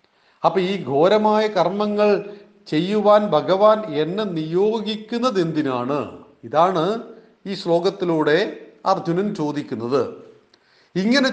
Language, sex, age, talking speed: Malayalam, male, 40-59, 80 wpm